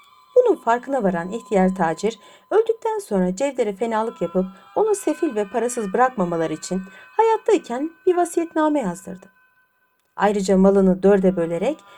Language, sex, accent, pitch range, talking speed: Turkish, female, native, 185-270 Hz, 120 wpm